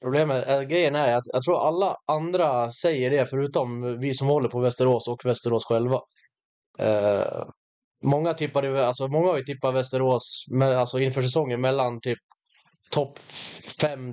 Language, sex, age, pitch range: Swedish, male, 20-39, 120-135 Hz